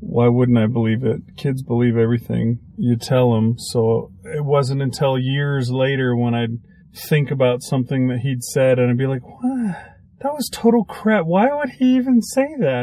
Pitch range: 120-175 Hz